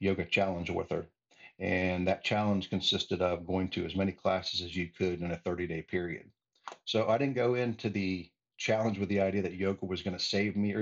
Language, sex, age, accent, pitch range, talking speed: English, male, 50-69, American, 90-105 Hz, 215 wpm